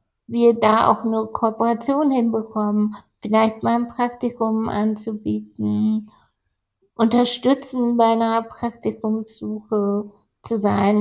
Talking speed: 95 wpm